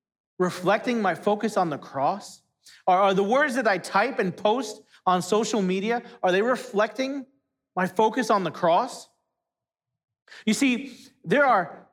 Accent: American